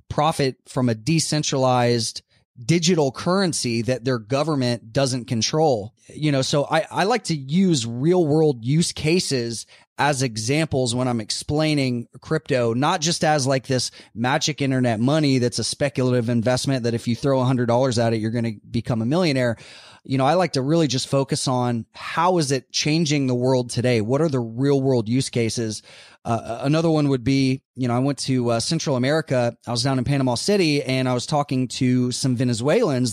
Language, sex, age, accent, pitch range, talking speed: English, male, 20-39, American, 125-155 Hz, 190 wpm